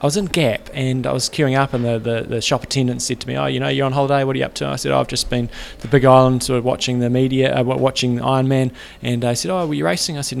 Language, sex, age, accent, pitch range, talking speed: English, male, 20-39, Australian, 125-145 Hz, 335 wpm